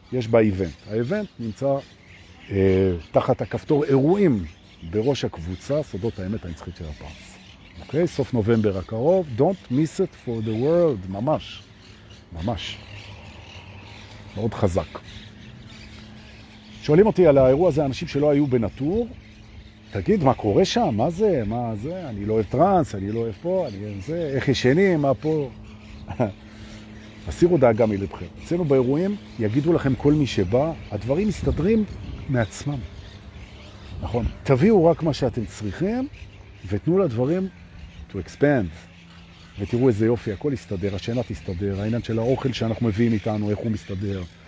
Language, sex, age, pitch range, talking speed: Hebrew, male, 50-69, 100-135 Hz, 110 wpm